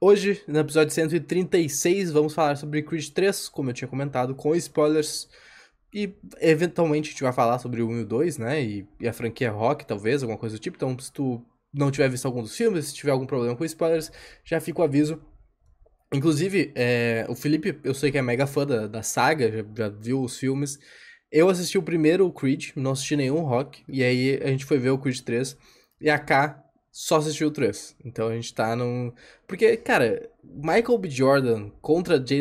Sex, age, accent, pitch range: male, 10-29, Brazilian, 130-175 Hz